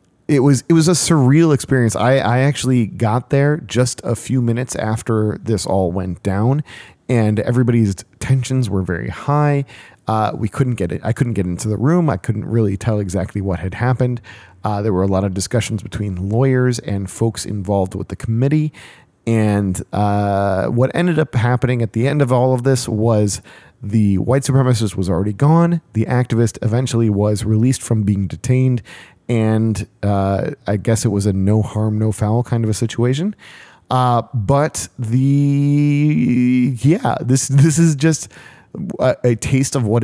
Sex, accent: male, American